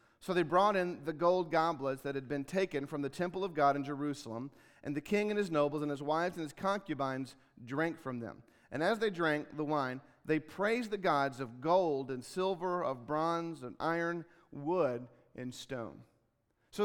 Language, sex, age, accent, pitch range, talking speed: English, male, 40-59, American, 145-195 Hz, 195 wpm